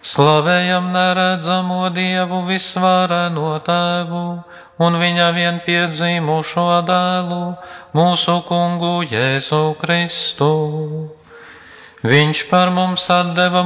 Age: 40-59